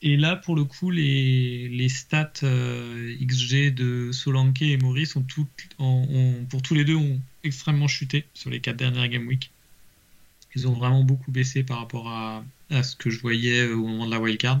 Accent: French